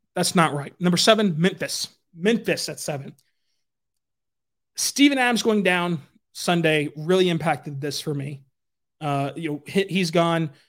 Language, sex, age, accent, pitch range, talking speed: English, male, 30-49, American, 165-210 Hz, 135 wpm